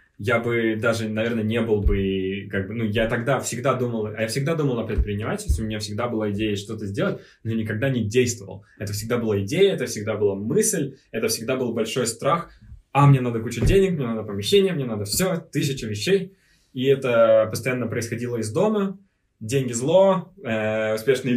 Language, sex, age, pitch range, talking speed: Russian, male, 20-39, 105-130 Hz, 190 wpm